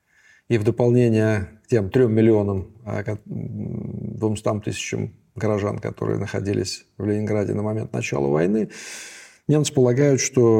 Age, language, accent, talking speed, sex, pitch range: 40-59, Russian, native, 120 wpm, male, 105-125 Hz